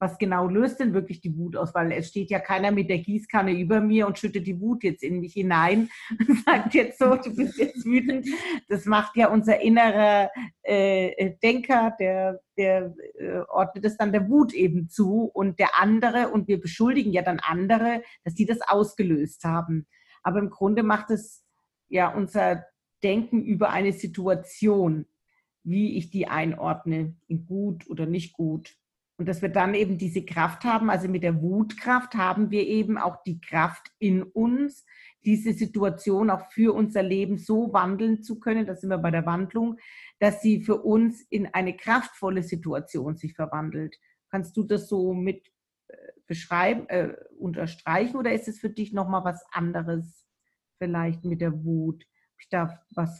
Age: 50-69